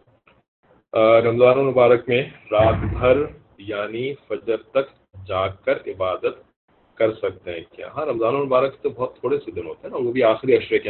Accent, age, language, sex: Indian, 40-59, English, male